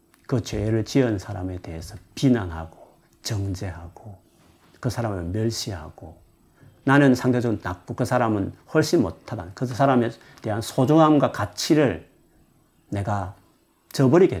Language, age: Korean, 40-59